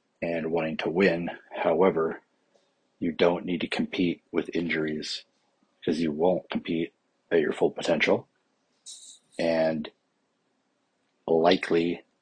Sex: male